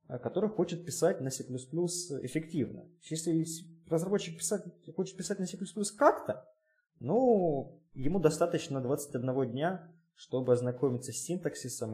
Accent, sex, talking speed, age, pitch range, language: native, male, 110 wpm, 20-39, 120-165 Hz, Russian